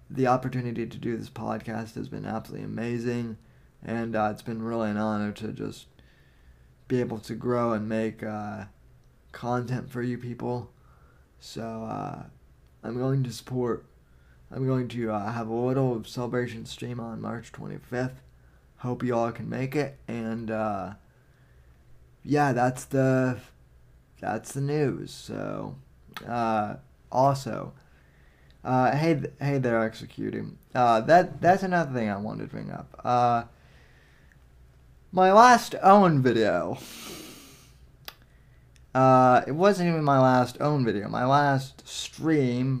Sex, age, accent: male, 20-39, American